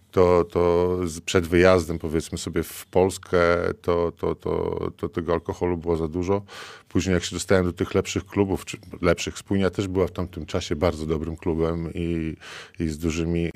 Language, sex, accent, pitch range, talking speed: Polish, male, native, 85-95 Hz, 175 wpm